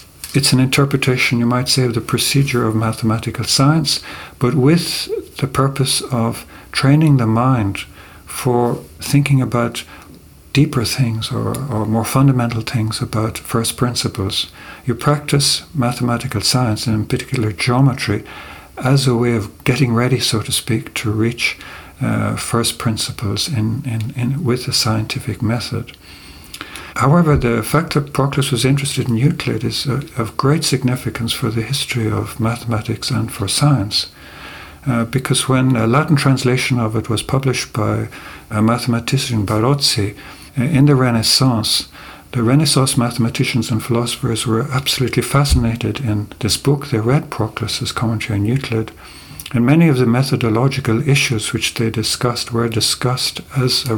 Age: 60-79